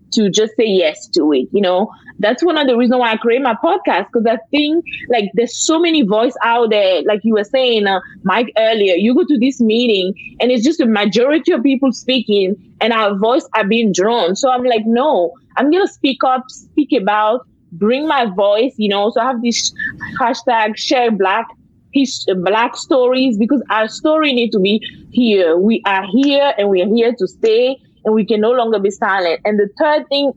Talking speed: 210 wpm